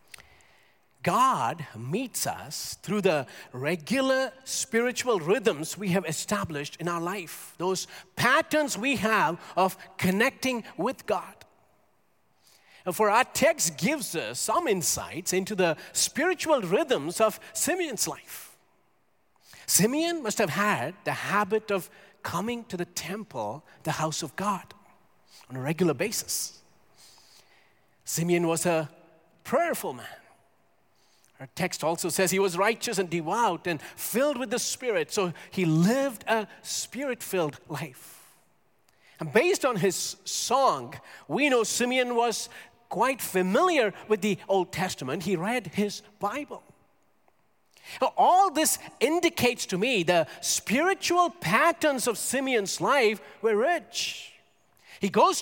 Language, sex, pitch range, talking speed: English, male, 175-245 Hz, 125 wpm